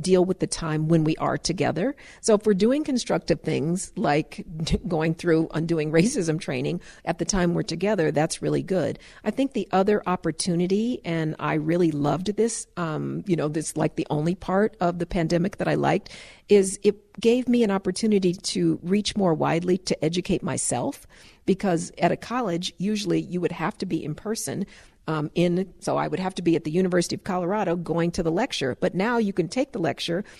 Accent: American